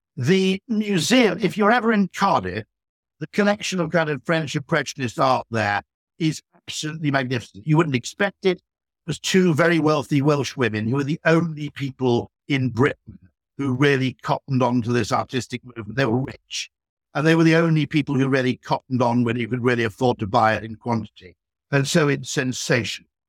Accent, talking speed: British, 185 wpm